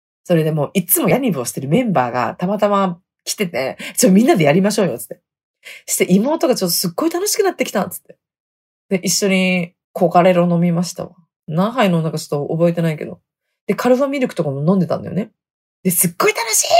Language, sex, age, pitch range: Japanese, female, 20-39, 170-245 Hz